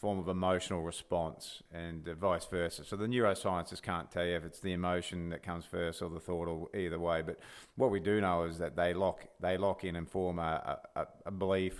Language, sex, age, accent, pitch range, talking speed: English, male, 40-59, Australian, 85-100 Hz, 225 wpm